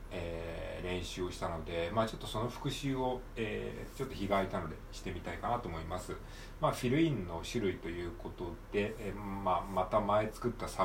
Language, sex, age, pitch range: Japanese, male, 40-59, 90-120 Hz